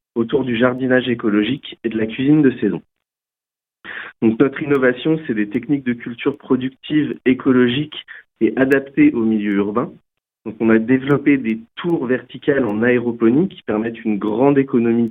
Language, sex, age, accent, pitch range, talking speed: French, male, 40-59, French, 115-140 Hz, 155 wpm